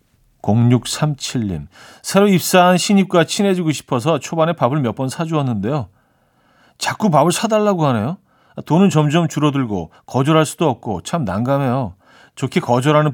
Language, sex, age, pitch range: Korean, male, 40-59, 120-170 Hz